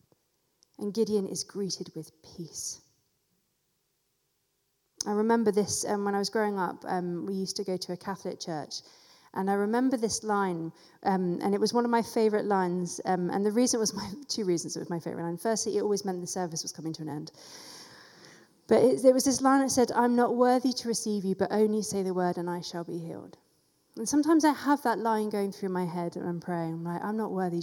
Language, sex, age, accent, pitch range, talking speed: English, female, 30-49, British, 170-215 Hz, 225 wpm